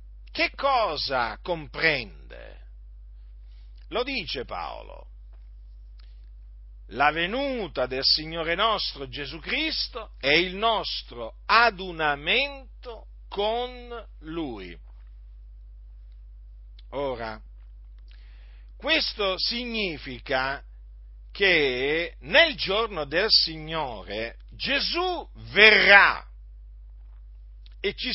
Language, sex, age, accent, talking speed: Italian, male, 50-69, native, 65 wpm